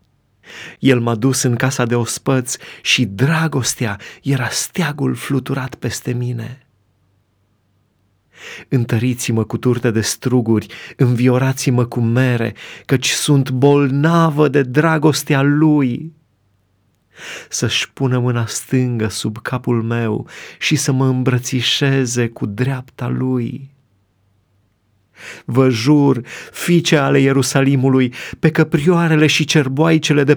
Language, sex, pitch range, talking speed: Romanian, male, 120-155 Hz, 105 wpm